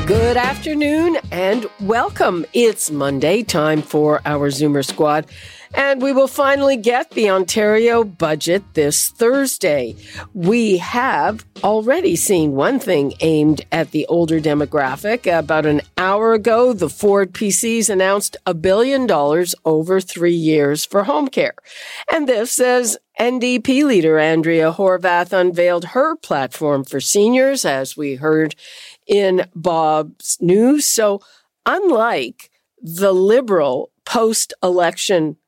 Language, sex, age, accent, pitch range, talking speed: English, female, 50-69, American, 160-245 Hz, 120 wpm